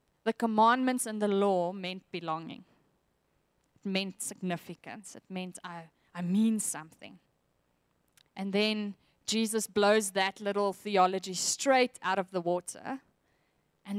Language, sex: English, female